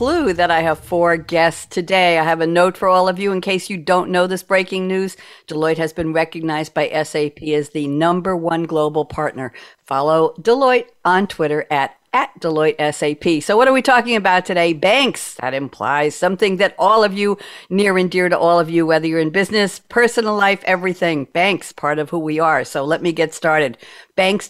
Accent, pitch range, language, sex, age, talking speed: American, 150-190 Hz, English, female, 60-79, 205 wpm